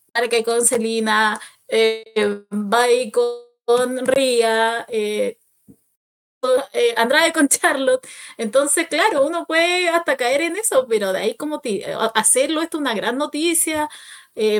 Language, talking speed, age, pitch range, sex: Spanish, 130 wpm, 20-39, 225-300 Hz, female